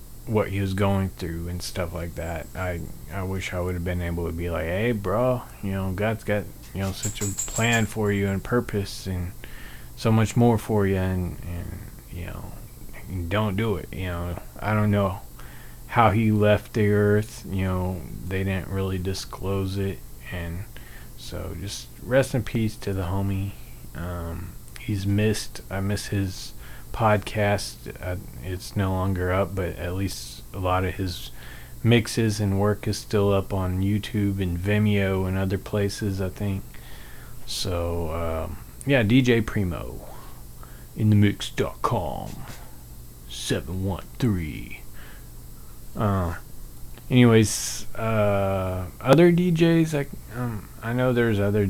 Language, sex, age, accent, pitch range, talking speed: English, male, 20-39, American, 90-105 Hz, 150 wpm